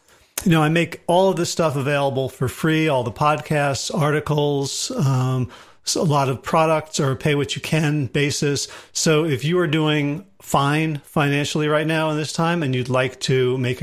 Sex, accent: male, American